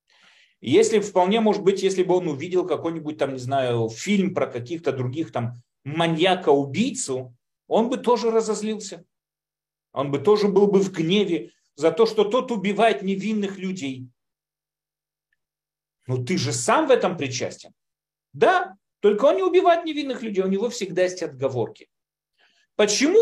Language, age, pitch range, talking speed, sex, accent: Russian, 40-59, 165-225 Hz, 135 wpm, male, native